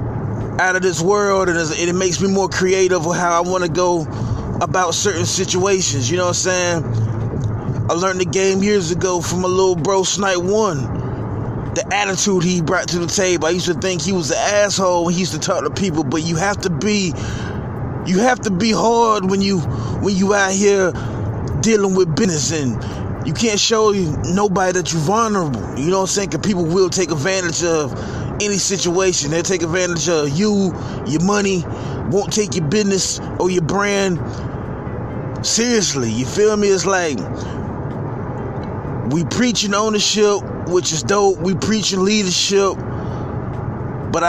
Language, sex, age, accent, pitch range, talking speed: English, male, 20-39, American, 130-195 Hz, 170 wpm